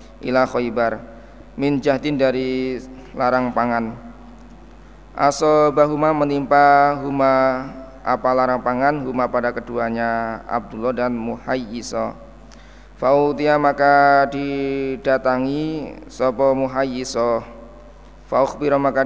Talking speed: 85 wpm